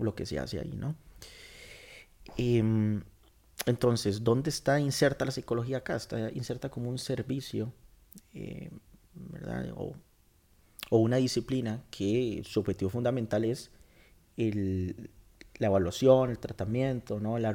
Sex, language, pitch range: male, Spanish, 105-130 Hz